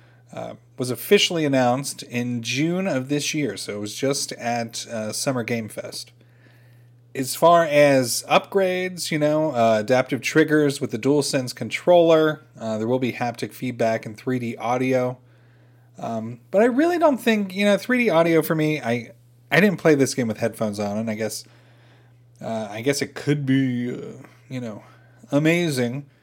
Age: 30-49